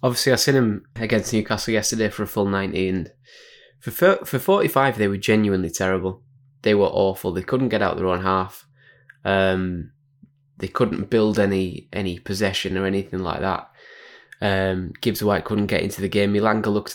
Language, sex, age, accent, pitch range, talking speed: English, male, 20-39, British, 95-115 Hz, 175 wpm